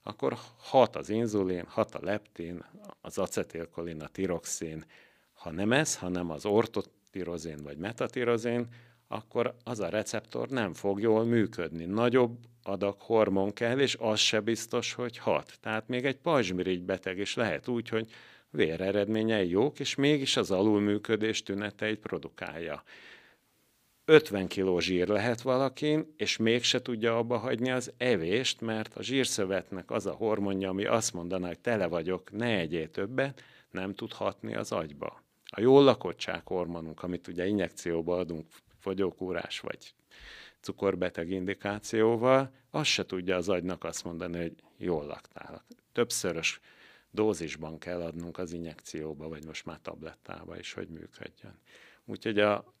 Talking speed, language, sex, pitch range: 140 wpm, Hungarian, male, 90-120 Hz